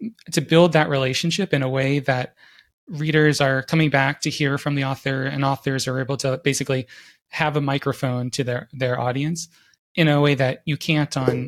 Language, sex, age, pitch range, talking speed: English, male, 20-39, 125-145 Hz, 195 wpm